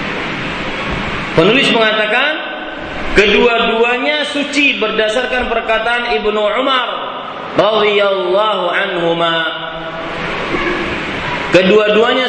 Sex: male